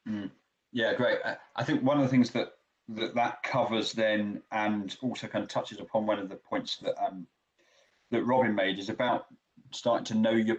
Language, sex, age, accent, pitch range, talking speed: English, male, 30-49, British, 110-130 Hz, 200 wpm